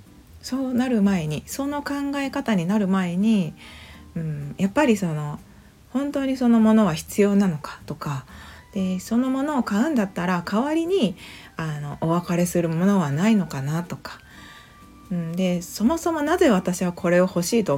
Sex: female